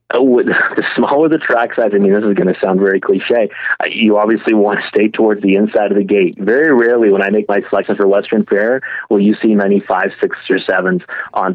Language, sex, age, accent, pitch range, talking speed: English, male, 30-49, American, 100-125 Hz, 235 wpm